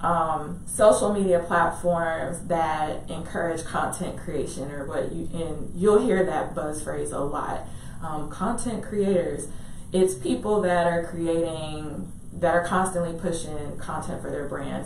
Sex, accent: female, American